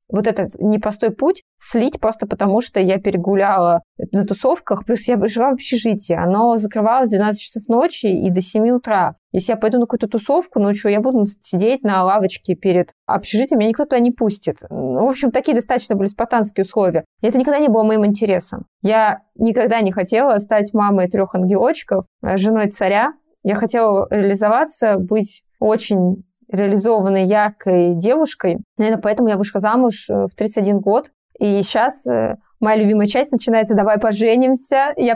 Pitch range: 200-235 Hz